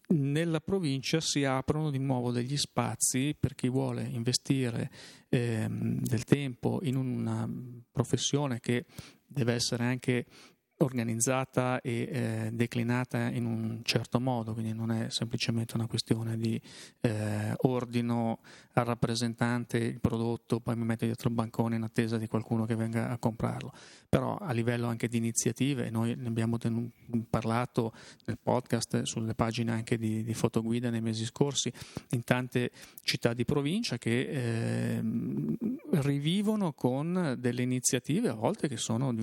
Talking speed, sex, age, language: 145 wpm, male, 30-49, Italian